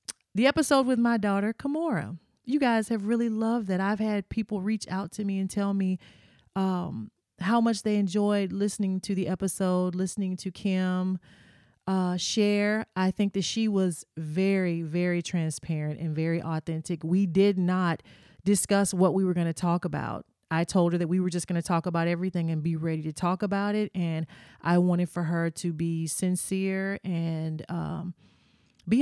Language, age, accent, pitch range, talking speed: English, 30-49, American, 170-205 Hz, 180 wpm